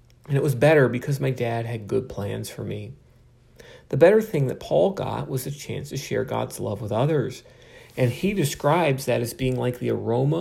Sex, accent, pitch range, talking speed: male, American, 120-140 Hz, 210 wpm